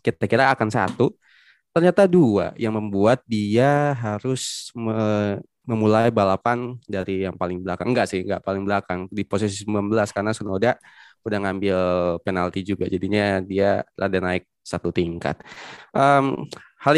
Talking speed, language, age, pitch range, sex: 140 wpm, Indonesian, 20-39, 100-125 Hz, male